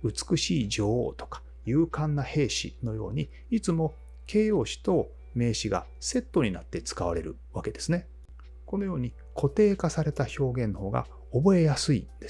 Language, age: Japanese, 40-59